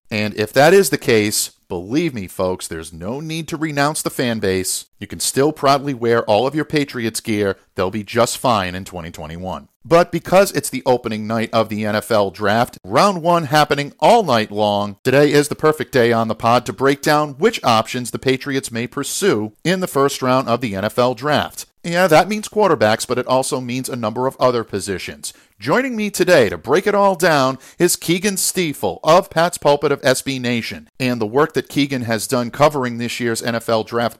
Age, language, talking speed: 50-69, English, 205 wpm